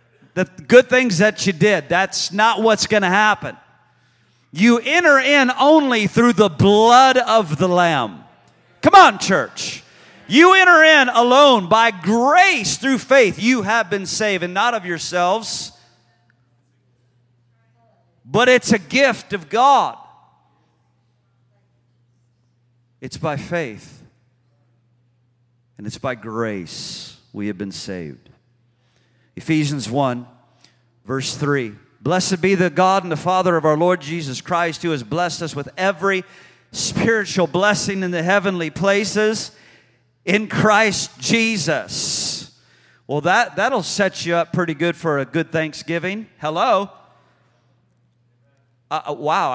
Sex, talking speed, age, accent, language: male, 125 wpm, 40-59, American, English